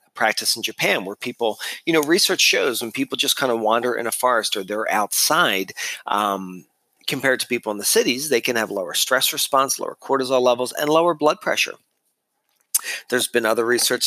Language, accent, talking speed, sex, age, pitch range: English, American, 190 wpm, male, 40-59, 110-150 Hz